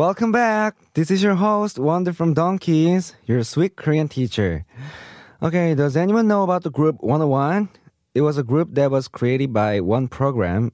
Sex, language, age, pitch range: male, Korean, 20-39, 95-145 Hz